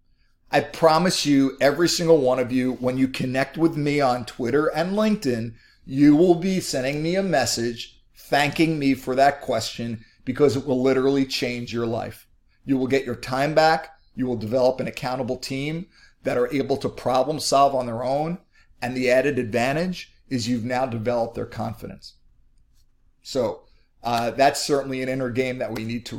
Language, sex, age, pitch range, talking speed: English, male, 40-59, 115-140 Hz, 180 wpm